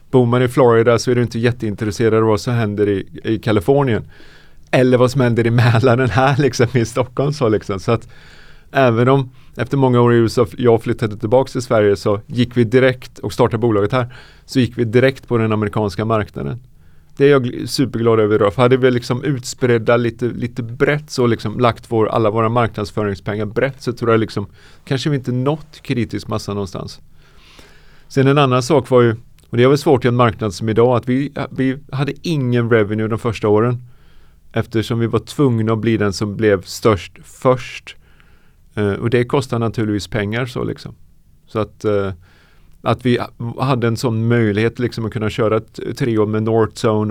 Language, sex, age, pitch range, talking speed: Swedish, male, 30-49, 110-130 Hz, 190 wpm